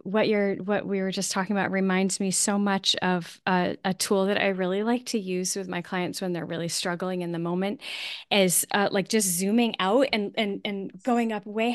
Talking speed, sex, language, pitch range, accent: 225 wpm, female, English, 185-230 Hz, American